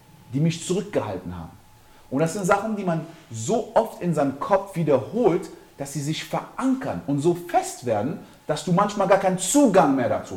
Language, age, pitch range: German, 40-59, 115-170 Hz